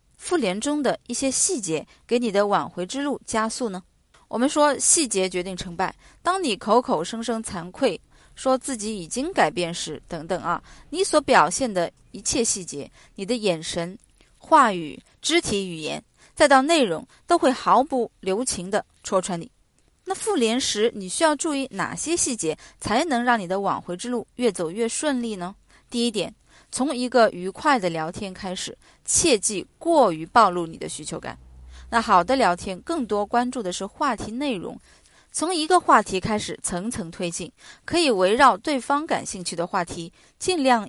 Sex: female